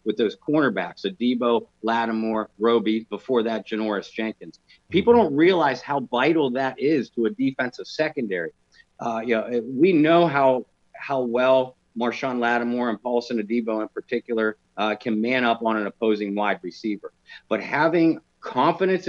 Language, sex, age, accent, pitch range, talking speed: English, male, 50-69, American, 110-140 Hz, 150 wpm